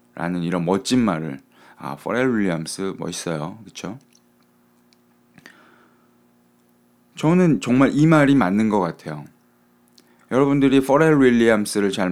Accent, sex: native, male